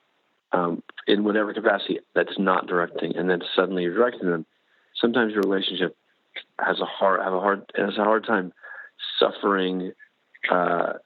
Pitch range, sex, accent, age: 90-110 Hz, male, American, 50-69